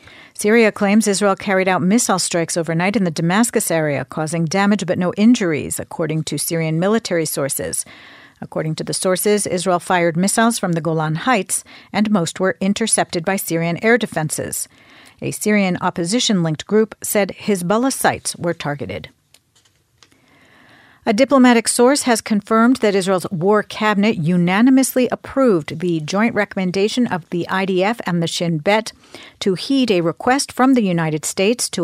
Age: 50-69